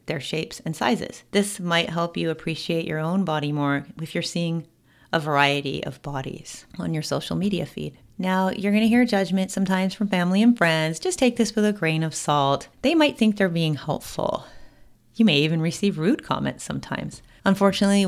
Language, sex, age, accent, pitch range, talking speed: English, female, 30-49, American, 150-200 Hz, 190 wpm